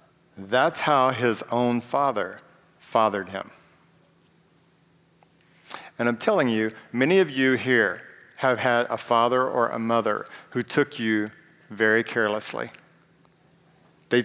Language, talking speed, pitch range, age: English, 120 wpm, 115-135 Hz, 50-69